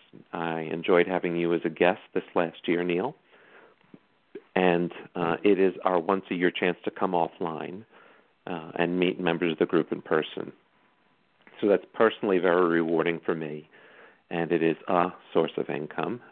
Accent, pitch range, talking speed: American, 85-95 Hz, 160 wpm